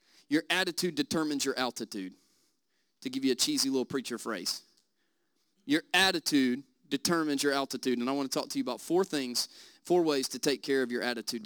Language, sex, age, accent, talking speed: English, male, 30-49, American, 190 wpm